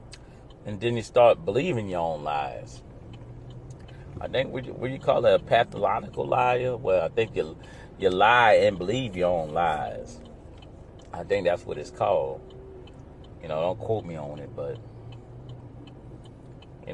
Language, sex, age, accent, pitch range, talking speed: English, male, 40-59, American, 105-125 Hz, 155 wpm